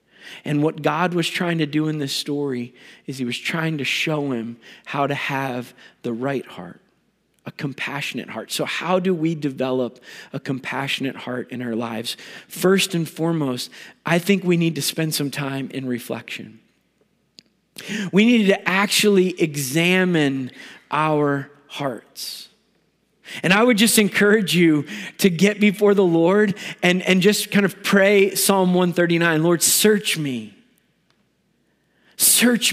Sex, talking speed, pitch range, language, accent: male, 145 wpm, 160-210 Hz, English, American